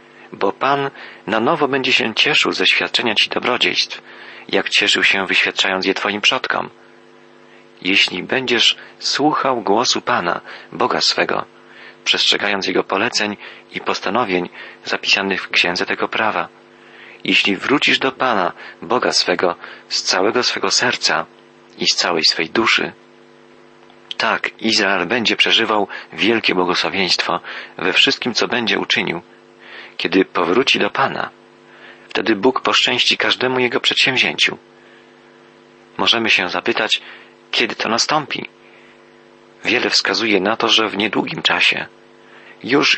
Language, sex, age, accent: Polish, male, 40-59, native